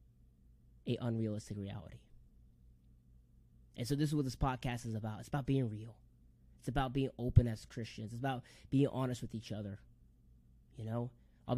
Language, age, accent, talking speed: English, 20-39, American, 165 wpm